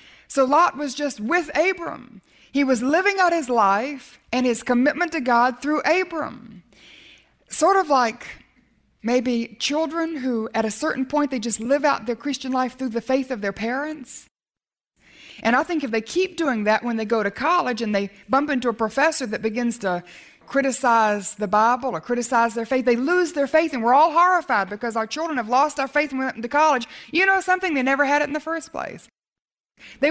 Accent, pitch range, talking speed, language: American, 230-305 Hz, 205 wpm, English